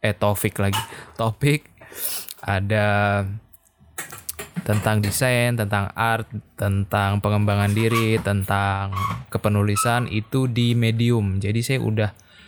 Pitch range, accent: 105-120 Hz, native